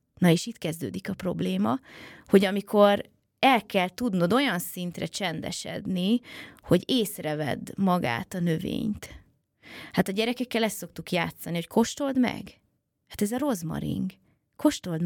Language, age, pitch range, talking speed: Hungarian, 20-39, 170-225 Hz, 130 wpm